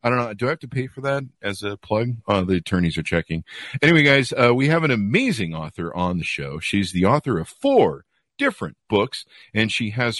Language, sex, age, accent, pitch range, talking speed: English, male, 50-69, American, 95-140 Hz, 230 wpm